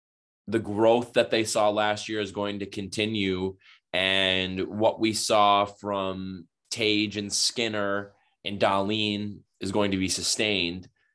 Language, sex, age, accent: English, male, 20-39, American